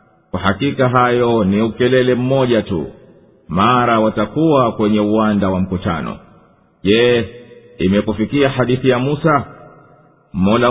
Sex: male